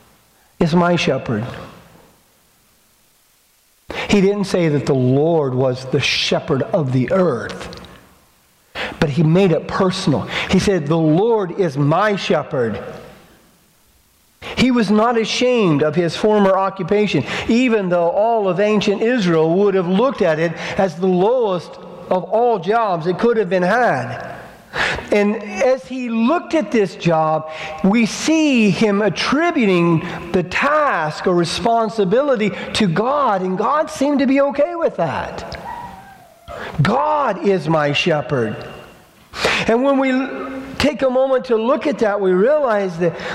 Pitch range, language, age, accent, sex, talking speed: 170-250 Hz, English, 50-69, American, male, 135 wpm